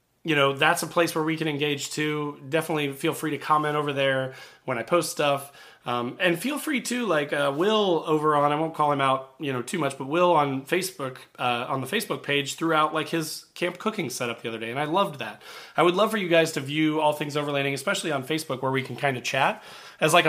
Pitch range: 135-170 Hz